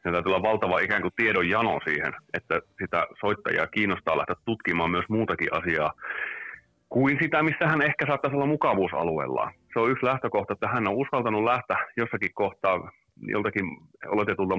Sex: male